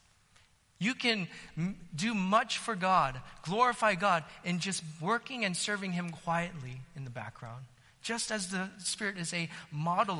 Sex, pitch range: male, 150-210 Hz